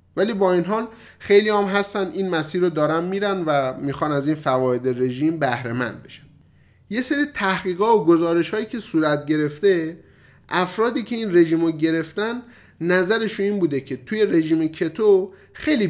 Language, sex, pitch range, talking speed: Persian, male, 145-200 Hz, 165 wpm